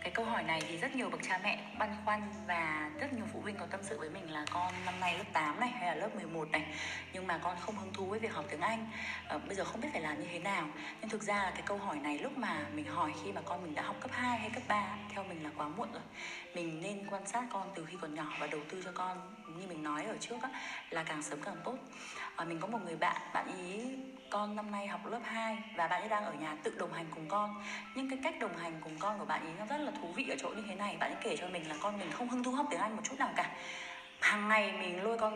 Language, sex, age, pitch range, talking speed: Vietnamese, female, 20-39, 175-230 Hz, 290 wpm